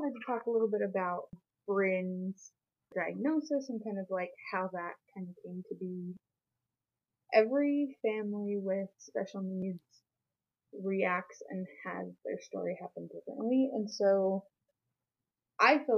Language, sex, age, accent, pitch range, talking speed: English, female, 20-39, American, 180-215 Hz, 135 wpm